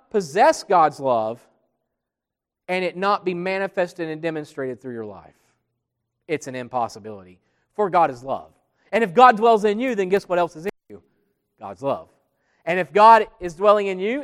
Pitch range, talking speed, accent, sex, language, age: 160-230 Hz, 175 wpm, American, male, English, 40-59